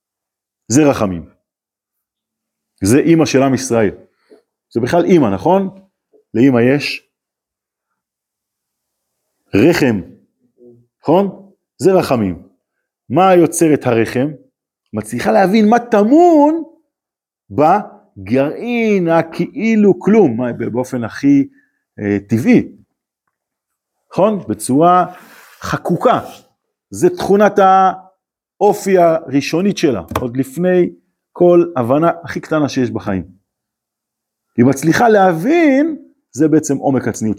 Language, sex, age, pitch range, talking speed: Hebrew, male, 40-59, 125-210 Hz, 90 wpm